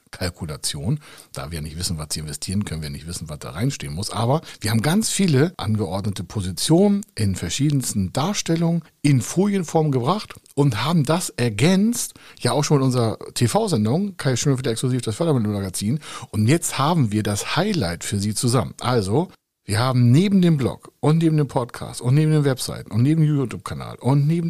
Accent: German